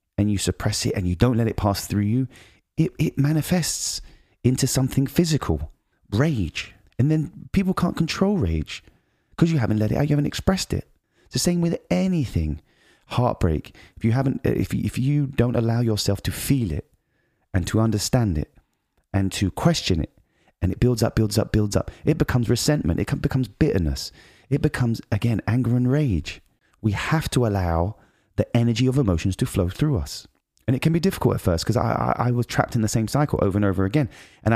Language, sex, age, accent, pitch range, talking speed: English, male, 30-49, British, 95-135 Hz, 200 wpm